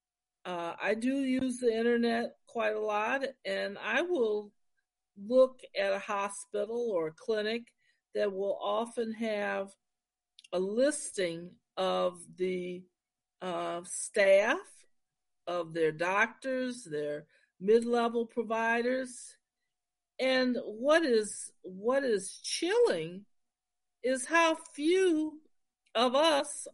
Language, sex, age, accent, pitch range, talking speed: English, female, 50-69, American, 195-285 Hz, 100 wpm